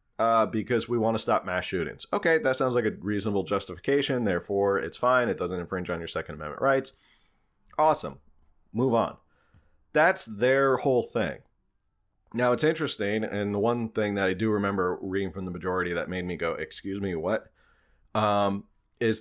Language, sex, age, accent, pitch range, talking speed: English, male, 30-49, American, 95-125 Hz, 180 wpm